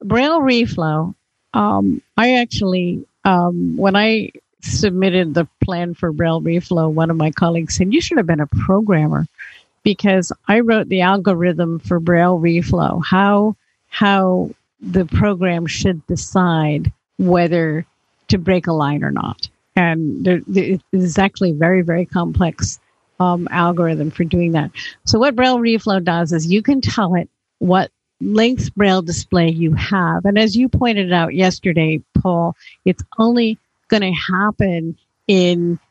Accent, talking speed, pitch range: American, 145 wpm, 165-195 Hz